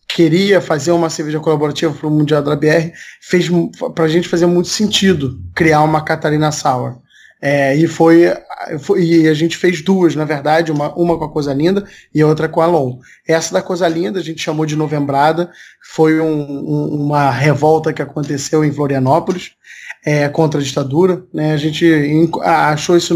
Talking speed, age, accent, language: 180 wpm, 20-39, Brazilian, Portuguese